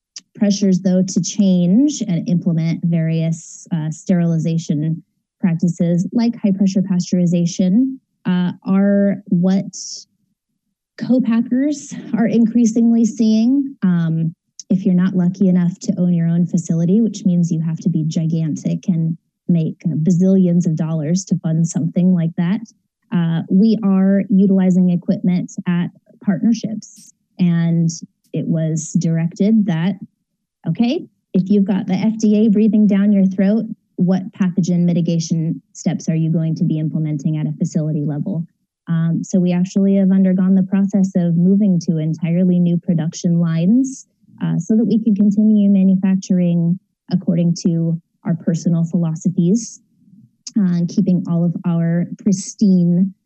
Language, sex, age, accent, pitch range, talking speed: English, female, 20-39, American, 170-205 Hz, 135 wpm